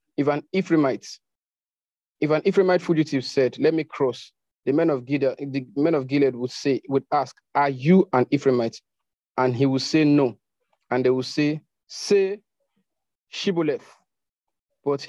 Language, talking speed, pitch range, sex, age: English, 155 wpm, 130-160 Hz, male, 40-59